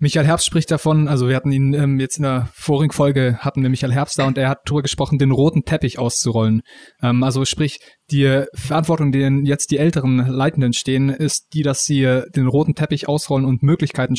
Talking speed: 210 wpm